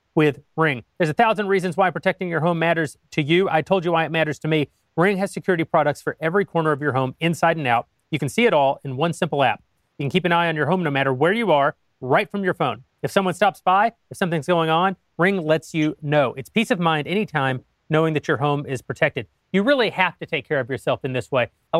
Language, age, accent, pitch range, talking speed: English, 30-49, American, 145-190 Hz, 260 wpm